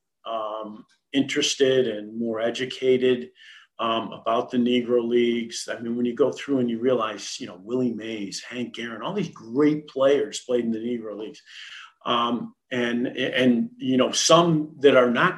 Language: English